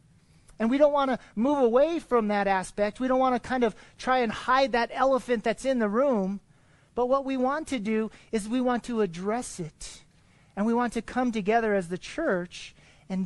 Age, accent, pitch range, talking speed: 40-59, American, 175-245 Hz, 215 wpm